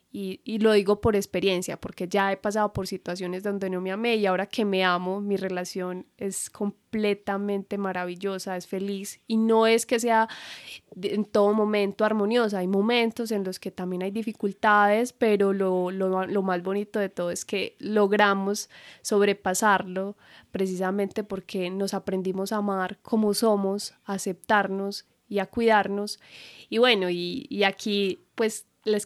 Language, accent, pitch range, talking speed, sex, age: Spanish, Colombian, 190-225 Hz, 160 wpm, female, 10-29